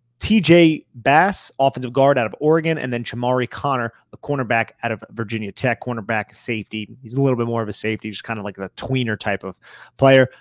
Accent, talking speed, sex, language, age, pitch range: American, 210 wpm, male, English, 30-49, 115-140 Hz